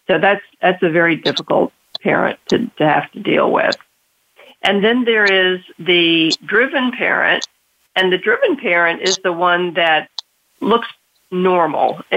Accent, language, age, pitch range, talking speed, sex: American, English, 50-69, 155-180 Hz, 150 wpm, female